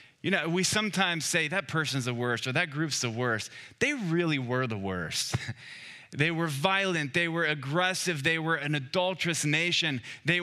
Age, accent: 20-39, American